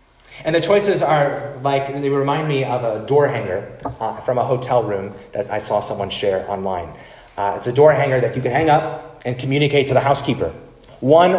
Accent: American